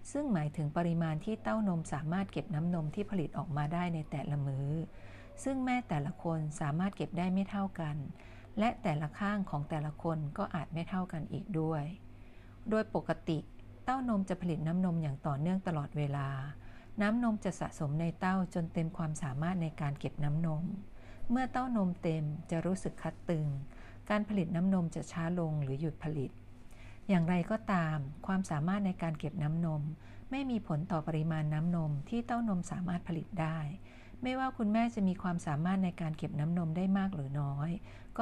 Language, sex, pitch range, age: Thai, female, 150-185 Hz, 60-79